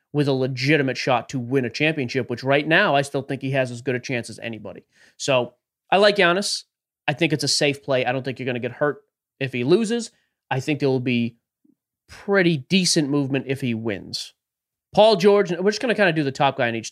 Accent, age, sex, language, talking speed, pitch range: American, 30-49, male, English, 240 wpm, 125-155 Hz